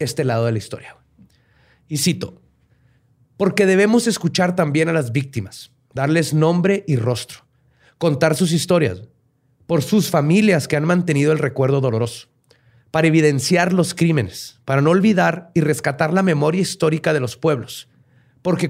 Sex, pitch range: male, 125-170 Hz